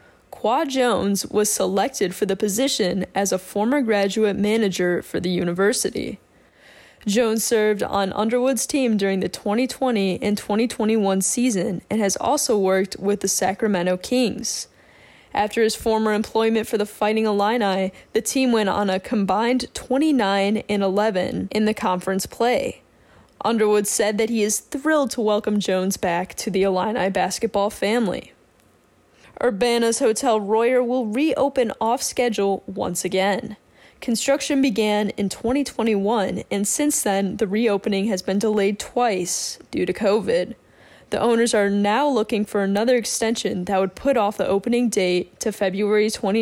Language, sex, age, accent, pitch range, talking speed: English, female, 10-29, American, 195-240 Hz, 145 wpm